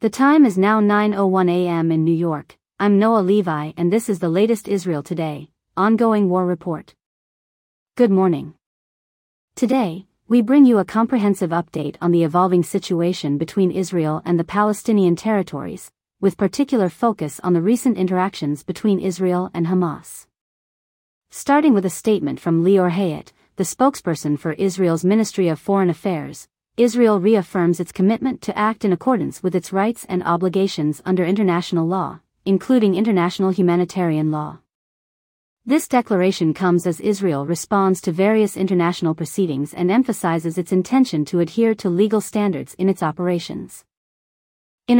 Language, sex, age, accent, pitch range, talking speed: English, female, 40-59, American, 170-210 Hz, 145 wpm